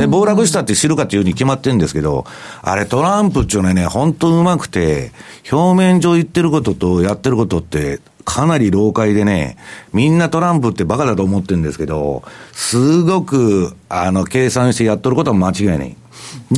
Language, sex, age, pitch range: Japanese, male, 60-79, 95-150 Hz